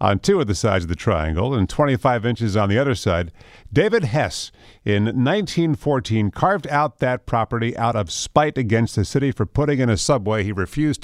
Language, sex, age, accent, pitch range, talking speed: English, male, 50-69, American, 100-130 Hz, 195 wpm